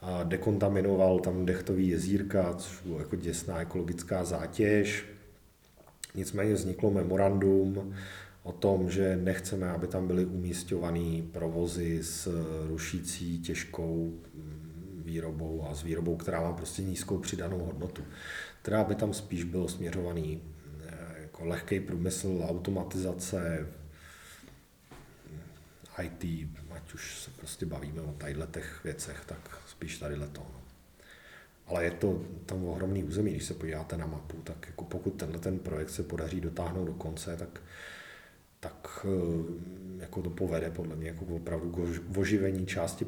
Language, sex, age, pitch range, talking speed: Czech, male, 40-59, 80-95 Hz, 130 wpm